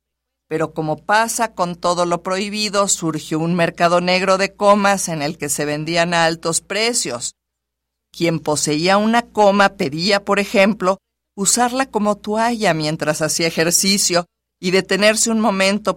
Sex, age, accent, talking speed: female, 50-69, Mexican, 145 wpm